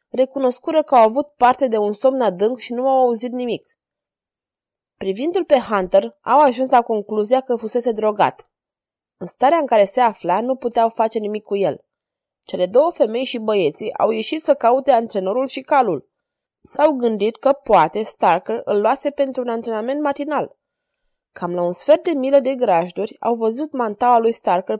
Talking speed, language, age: 175 wpm, Romanian, 20-39